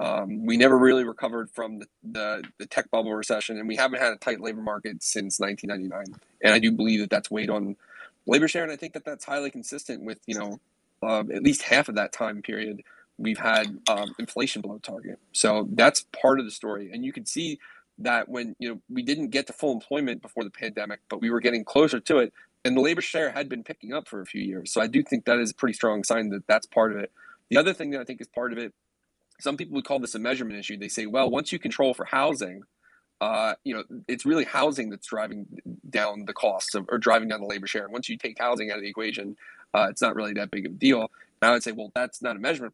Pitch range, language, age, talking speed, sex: 110-135 Hz, English, 30-49, 260 wpm, male